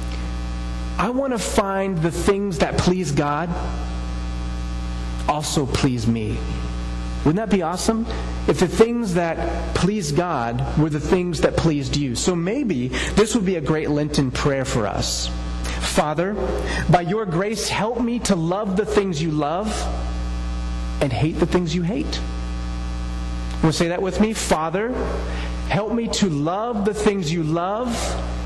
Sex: male